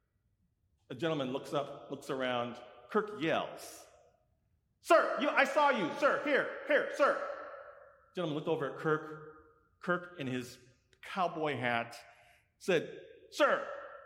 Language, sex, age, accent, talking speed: English, male, 40-59, American, 125 wpm